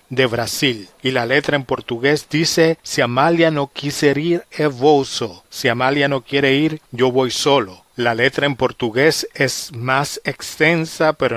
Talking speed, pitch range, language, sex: 160 wpm, 120-150 Hz, Spanish, male